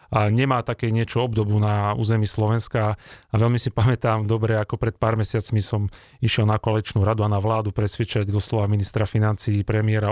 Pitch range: 105-115 Hz